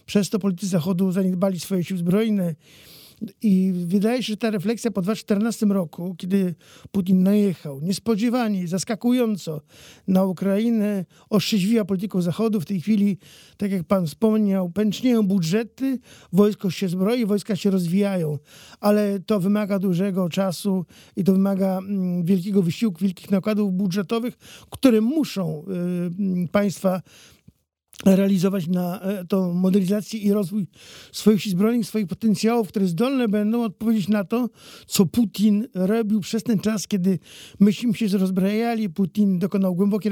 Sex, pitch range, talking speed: male, 190-215 Hz, 130 wpm